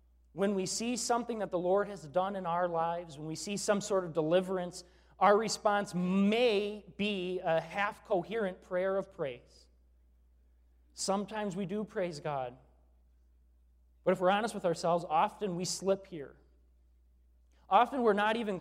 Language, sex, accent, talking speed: English, male, American, 150 wpm